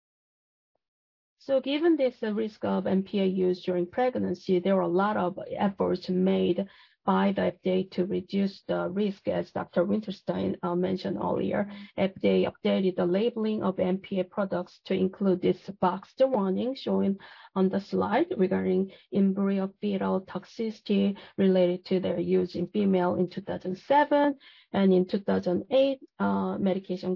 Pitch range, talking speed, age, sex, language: 185-215 Hz, 135 wpm, 40-59, female, English